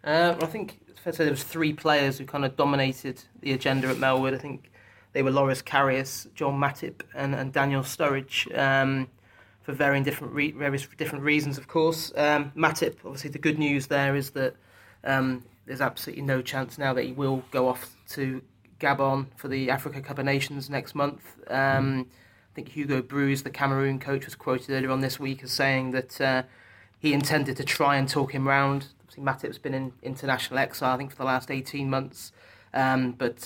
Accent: British